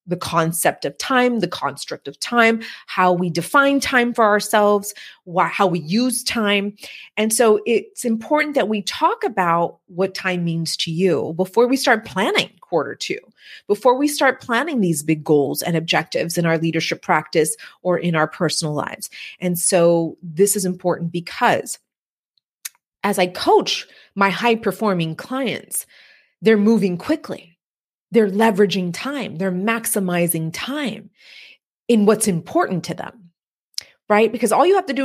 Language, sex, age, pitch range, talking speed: English, female, 30-49, 175-225 Hz, 150 wpm